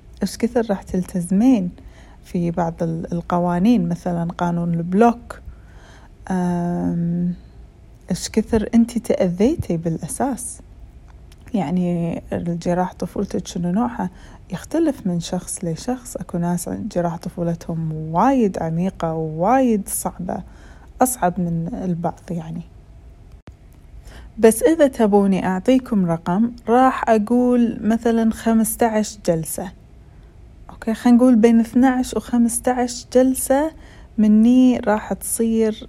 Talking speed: 90 wpm